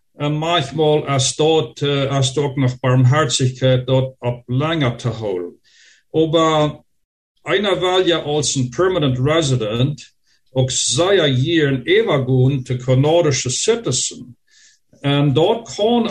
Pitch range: 130-160 Hz